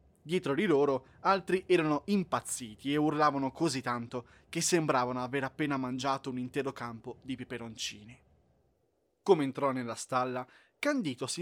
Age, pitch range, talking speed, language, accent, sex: 20-39, 125-175 Hz, 135 wpm, Italian, native, male